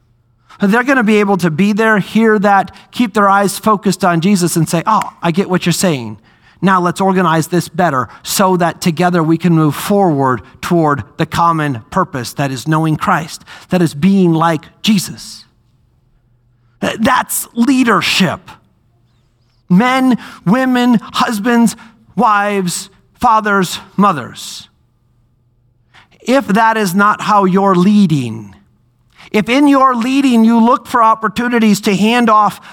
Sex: male